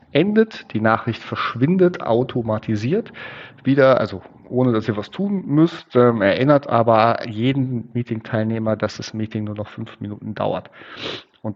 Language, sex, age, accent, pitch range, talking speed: German, male, 40-59, German, 110-130 Hz, 140 wpm